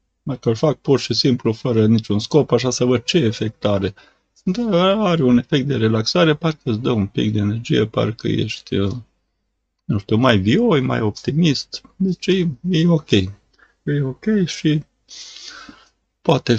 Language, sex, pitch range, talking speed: Romanian, male, 100-140 Hz, 160 wpm